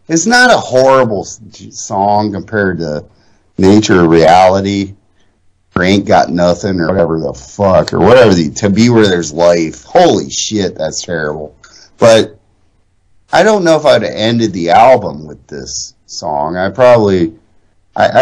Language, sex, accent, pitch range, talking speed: English, male, American, 90-120 Hz, 150 wpm